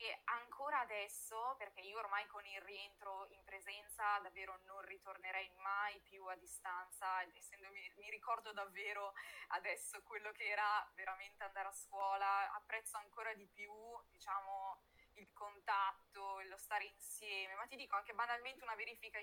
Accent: native